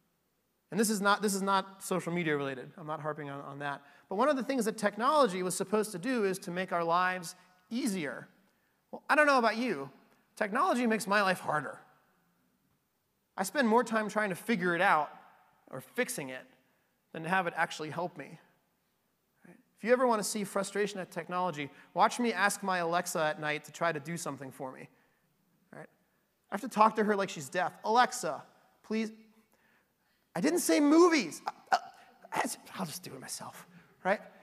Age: 30-49